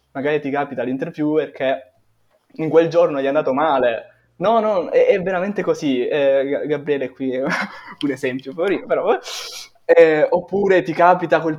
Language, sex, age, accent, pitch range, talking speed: Italian, male, 20-39, native, 135-180 Hz, 160 wpm